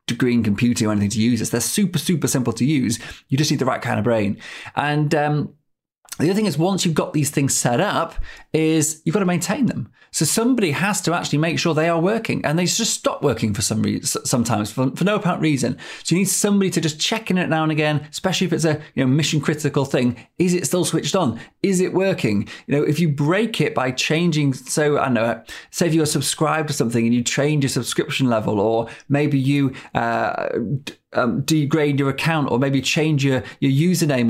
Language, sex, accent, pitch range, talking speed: English, male, British, 130-165 Hz, 220 wpm